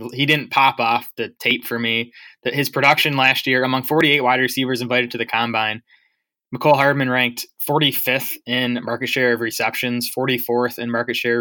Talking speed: 180 wpm